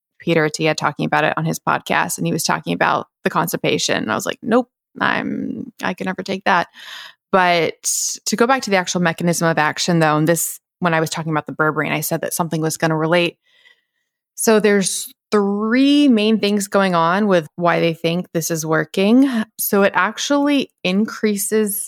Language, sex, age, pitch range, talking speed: English, female, 20-39, 160-205 Hz, 195 wpm